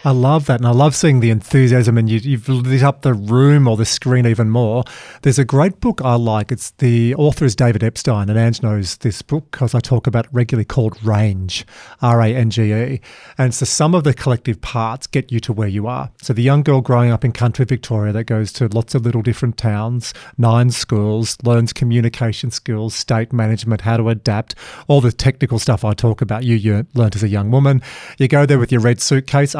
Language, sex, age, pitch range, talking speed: English, male, 40-59, 115-145 Hz, 220 wpm